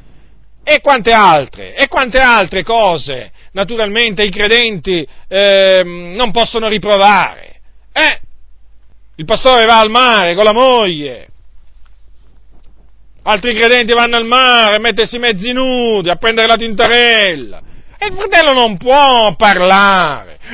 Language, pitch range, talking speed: Italian, 190-245 Hz, 125 wpm